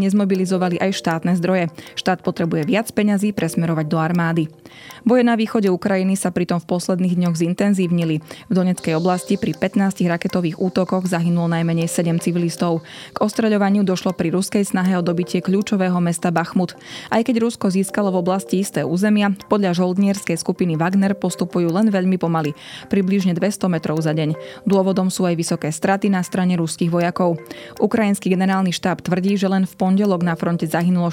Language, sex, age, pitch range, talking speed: Slovak, female, 20-39, 170-195 Hz, 160 wpm